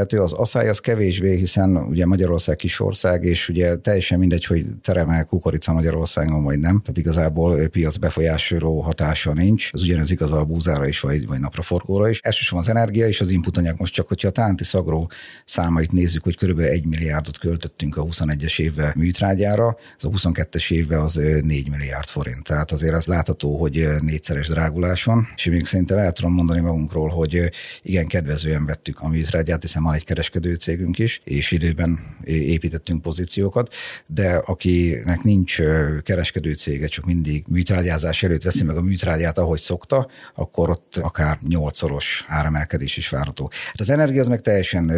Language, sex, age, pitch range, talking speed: Hungarian, male, 50-69, 80-90 Hz, 165 wpm